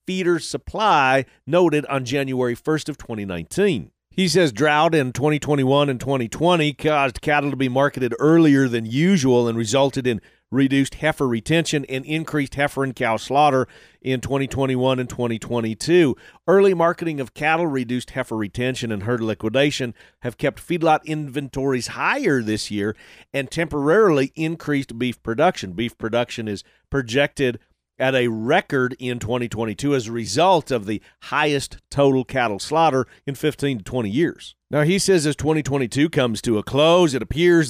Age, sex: 40-59, male